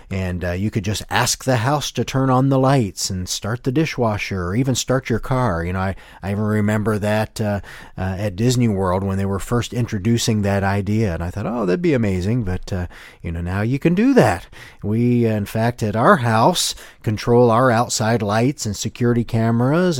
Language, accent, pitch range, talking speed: English, American, 105-135 Hz, 215 wpm